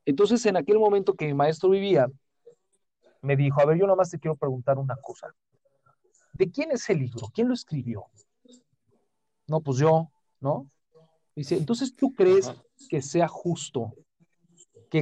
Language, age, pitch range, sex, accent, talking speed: Spanish, 40-59, 140-190 Hz, male, Mexican, 160 wpm